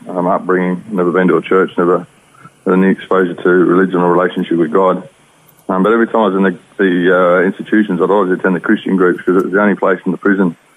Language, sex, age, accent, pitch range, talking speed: English, male, 20-39, Australian, 95-110 Hz, 245 wpm